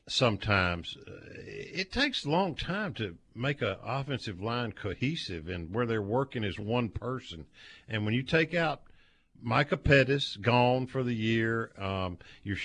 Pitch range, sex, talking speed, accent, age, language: 110-140 Hz, male, 155 wpm, American, 50-69, English